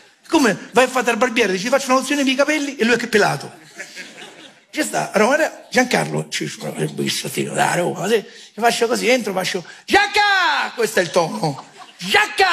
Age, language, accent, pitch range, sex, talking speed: 40-59, Italian, native, 175-255 Hz, male, 170 wpm